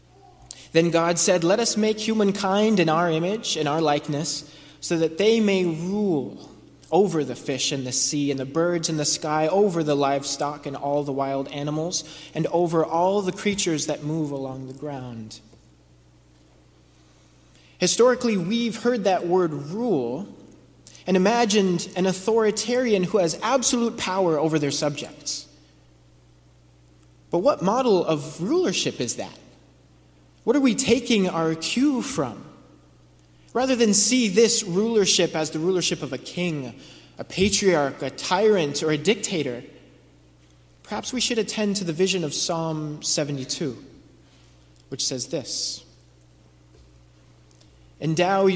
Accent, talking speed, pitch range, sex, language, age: American, 135 wpm, 130-190 Hz, male, English, 30-49